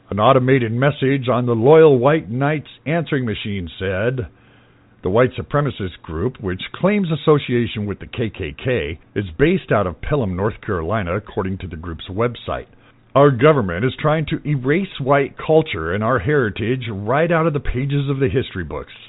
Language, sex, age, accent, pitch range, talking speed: English, male, 50-69, American, 100-145 Hz, 165 wpm